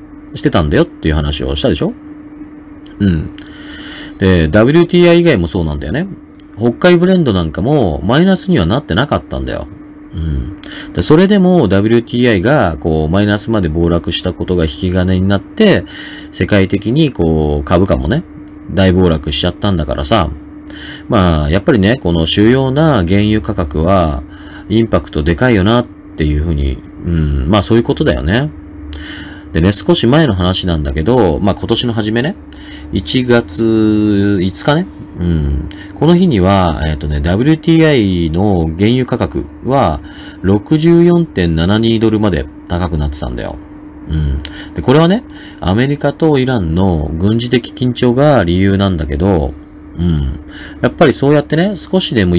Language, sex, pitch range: Japanese, male, 85-130 Hz